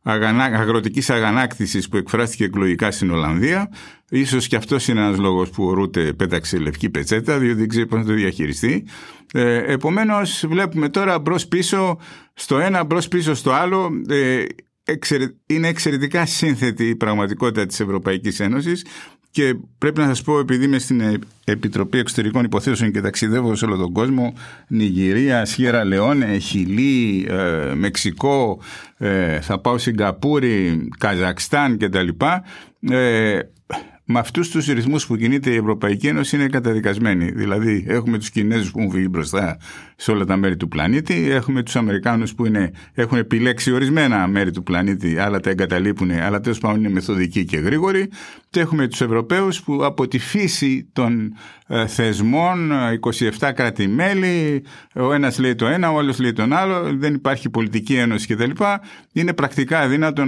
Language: Greek